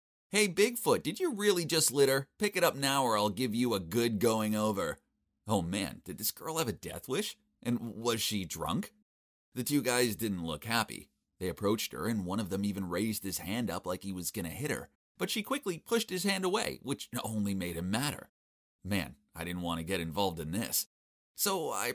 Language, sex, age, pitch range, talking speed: English, male, 30-49, 90-130 Hz, 220 wpm